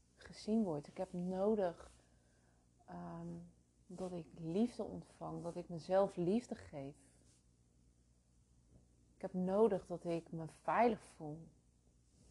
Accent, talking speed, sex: Dutch, 110 wpm, female